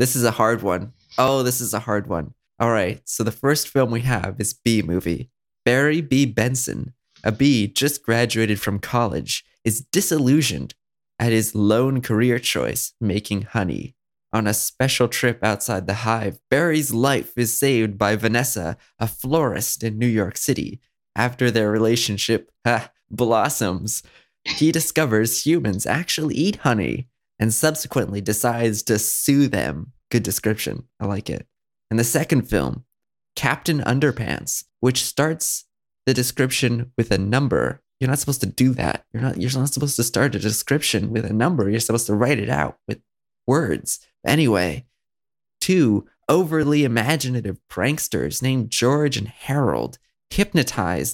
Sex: male